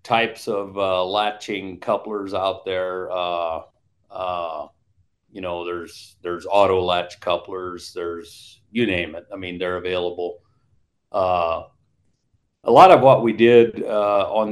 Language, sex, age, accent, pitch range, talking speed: English, male, 40-59, American, 100-120 Hz, 135 wpm